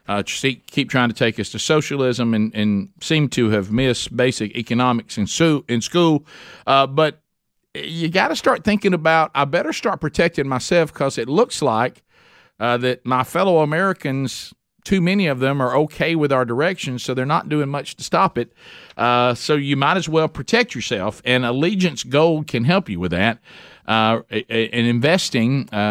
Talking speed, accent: 180 wpm, American